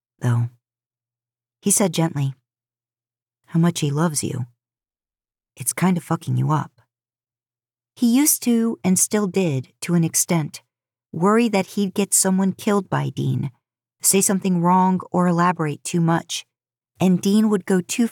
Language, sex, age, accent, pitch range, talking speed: English, female, 40-59, American, 125-185 Hz, 145 wpm